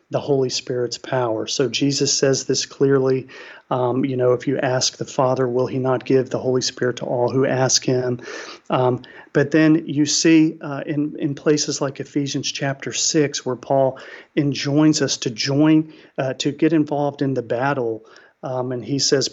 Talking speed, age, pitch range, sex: 185 wpm, 40-59, 130-155 Hz, male